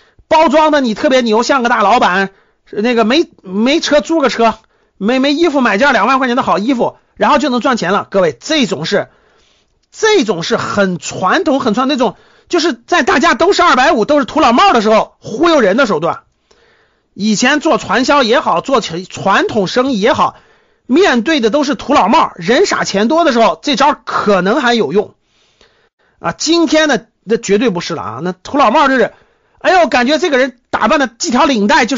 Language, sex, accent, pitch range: Chinese, male, native, 205-310 Hz